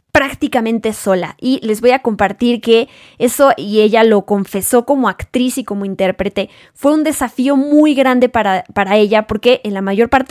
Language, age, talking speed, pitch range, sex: Spanish, 20-39, 180 wpm, 205-245 Hz, female